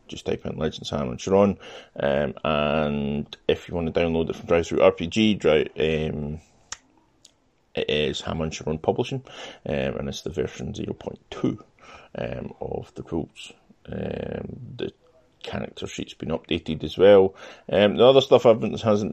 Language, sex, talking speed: English, male, 160 wpm